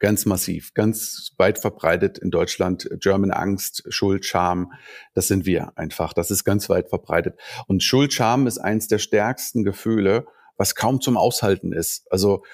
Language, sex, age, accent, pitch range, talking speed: German, male, 40-59, German, 105-135 Hz, 165 wpm